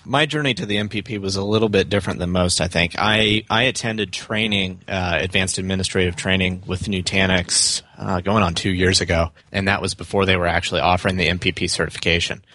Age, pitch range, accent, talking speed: 30-49, 90-105 Hz, American, 195 wpm